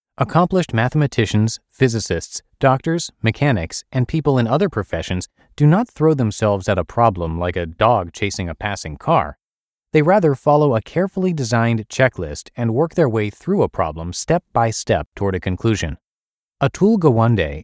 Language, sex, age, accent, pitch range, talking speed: English, male, 30-49, American, 95-135 Hz, 155 wpm